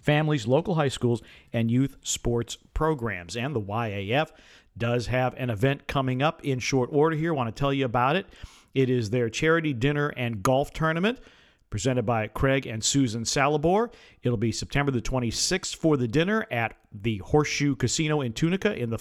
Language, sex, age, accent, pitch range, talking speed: English, male, 50-69, American, 115-145 Hz, 185 wpm